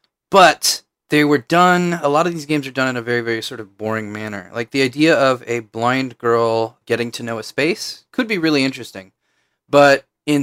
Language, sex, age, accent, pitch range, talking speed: English, male, 20-39, American, 110-130 Hz, 215 wpm